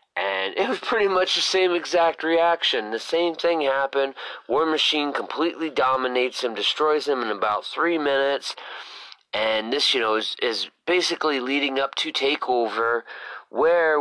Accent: American